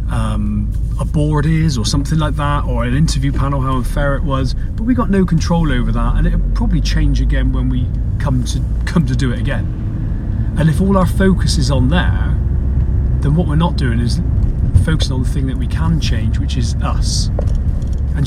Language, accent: English, British